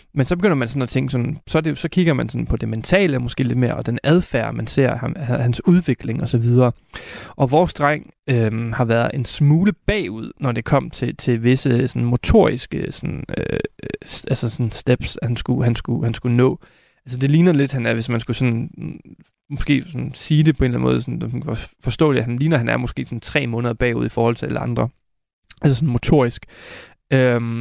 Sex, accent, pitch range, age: male, native, 120-145 Hz, 20-39